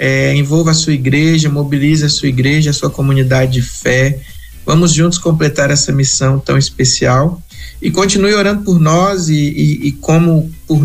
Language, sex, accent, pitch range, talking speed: Portuguese, male, Brazilian, 130-155 Hz, 165 wpm